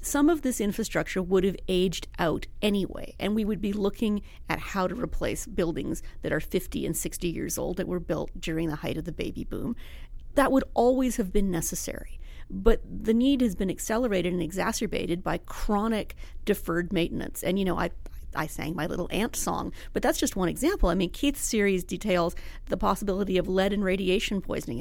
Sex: female